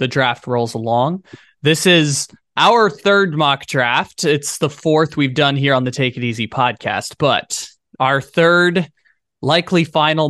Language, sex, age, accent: English, male, 20-39, American